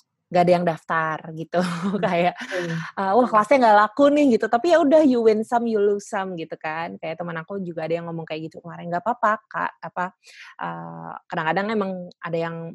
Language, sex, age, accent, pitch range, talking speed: Indonesian, female, 20-39, native, 170-210 Hz, 200 wpm